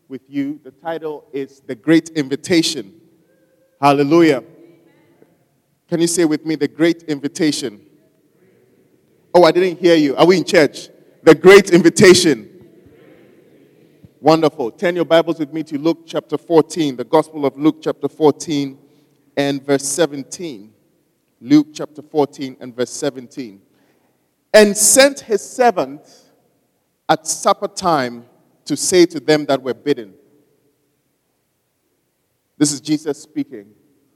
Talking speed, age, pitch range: 125 wpm, 30-49, 145-180 Hz